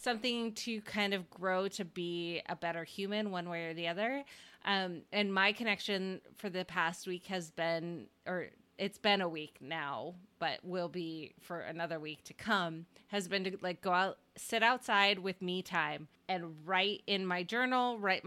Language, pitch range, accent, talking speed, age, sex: English, 180-220 Hz, American, 185 wpm, 30-49, female